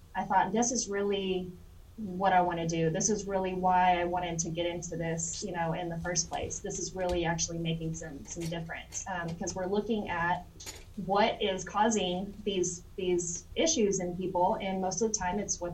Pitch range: 175-205 Hz